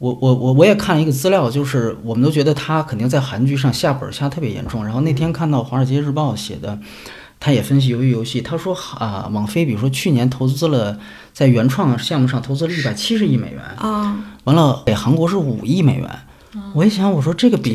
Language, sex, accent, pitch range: Chinese, male, native, 115-170 Hz